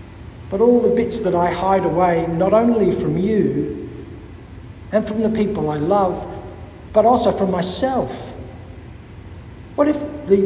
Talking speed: 145 wpm